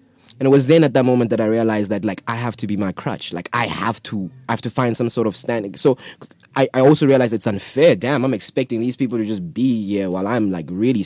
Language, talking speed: English, 270 wpm